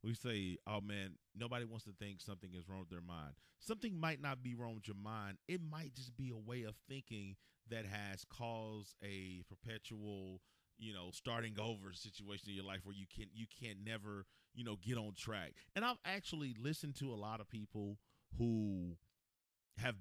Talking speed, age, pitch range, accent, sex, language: 195 wpm, 30-49, 90-115 Hz, American, male, English